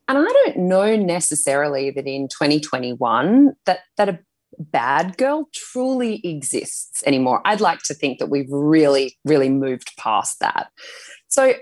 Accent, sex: Australian, female